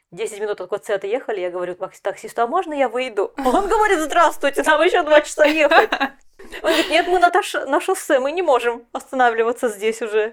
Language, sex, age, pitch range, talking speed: Russian, female, 20-39, 190-270 Hz, 210 wpm